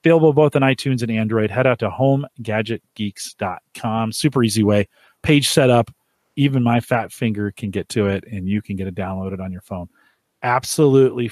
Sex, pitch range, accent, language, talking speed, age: male, 110-145 Hz, American, English, 175 wpm, 40-59